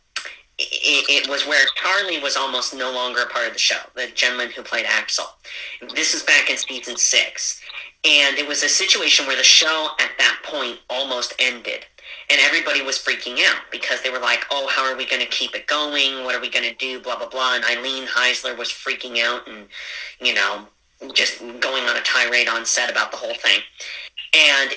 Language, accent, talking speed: English, American, 205 wpm